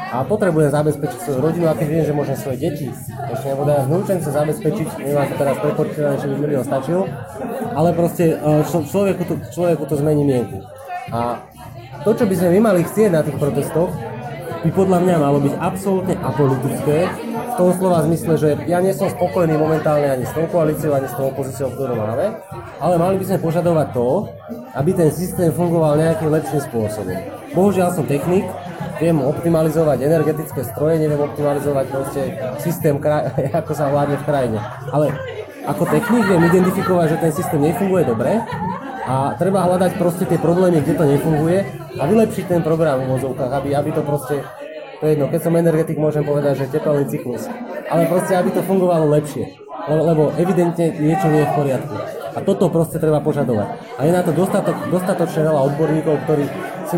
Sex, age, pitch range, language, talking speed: male, 20-39, 145-175 Hz, Slovak, 175 wpm